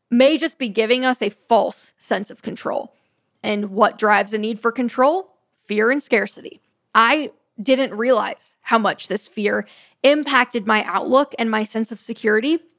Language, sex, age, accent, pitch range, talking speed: English, female, 10-29, American, 215-275 Hz, 165 wpm